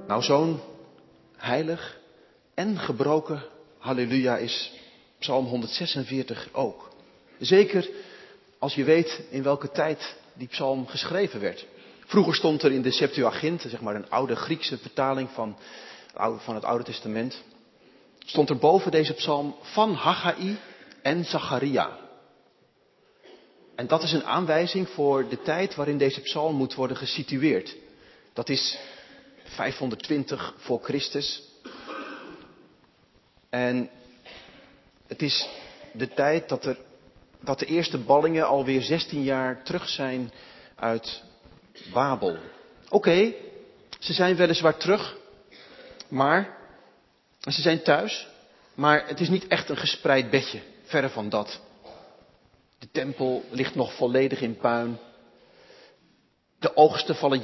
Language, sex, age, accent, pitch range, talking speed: Dutch, male, 40-59, Dutch, 125-165 Hz, 120 wpm